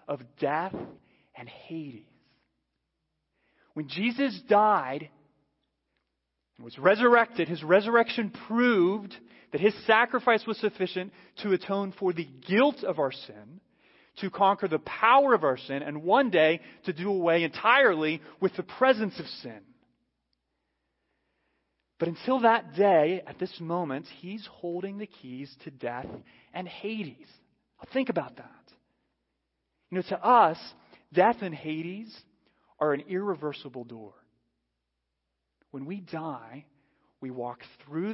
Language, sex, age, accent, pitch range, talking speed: English, male, 30-49, American, 130-195 Hz, 125 wpm